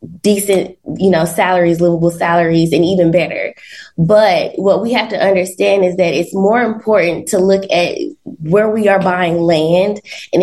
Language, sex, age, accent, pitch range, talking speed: English, female, 20-39, American, 170-195 Hz, 165 wpm